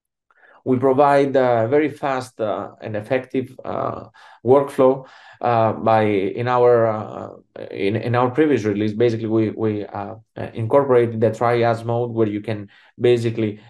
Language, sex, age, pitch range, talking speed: English, male, 30-49, 105-125 Hz, 145 wpm